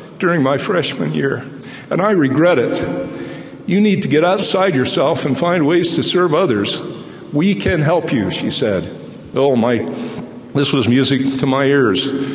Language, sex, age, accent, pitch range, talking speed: English, male, 50-69, American, 120-140 Hz, 165 wpm